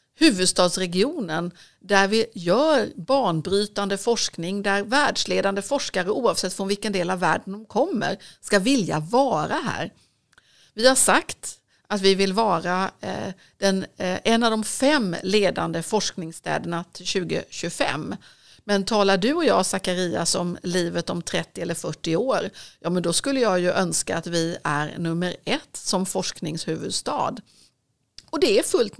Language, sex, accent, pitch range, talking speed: Swedish, female, native, 175-230 Hz, 145 wpm